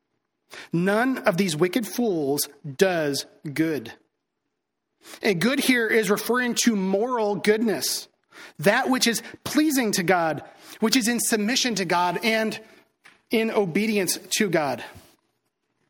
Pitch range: 175-220 Hz